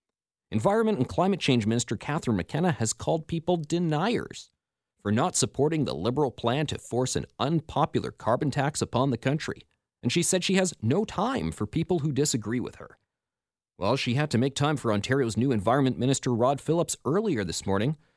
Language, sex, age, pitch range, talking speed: English, male, 40-59, 115-155 Hz, 180 wpm